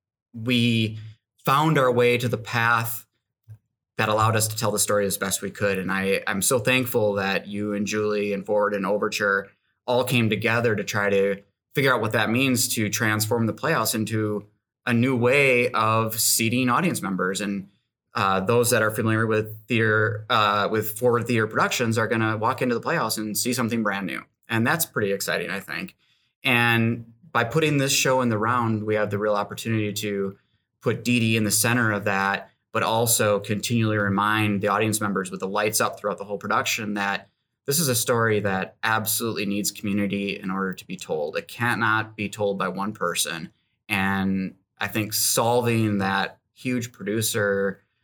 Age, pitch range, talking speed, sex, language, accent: 20-39, 100-120 Hz, 185 wpm, male, English, American